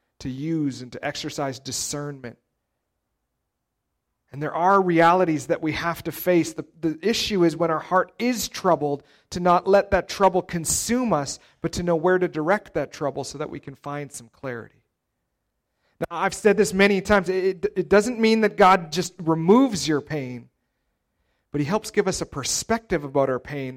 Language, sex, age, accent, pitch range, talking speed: English, male, 40-59, American, 135-180 Hz, 185 wpm